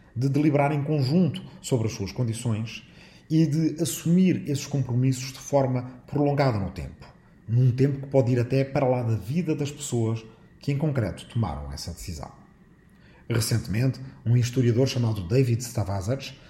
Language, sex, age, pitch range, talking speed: Portuguese, male, 40-59, 110-145 Hz, 155 wpm